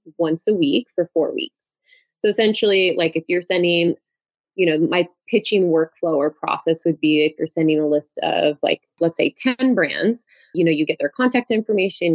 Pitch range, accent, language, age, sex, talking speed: 165-225 Hz, American, English, 20-39, female, 195 wpm